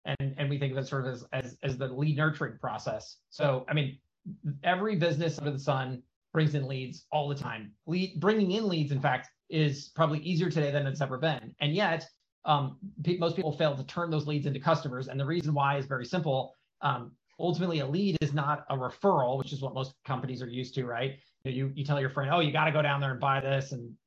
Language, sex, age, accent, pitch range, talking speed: English, male, 30-49, American, 135-160 Hz, 245 wpm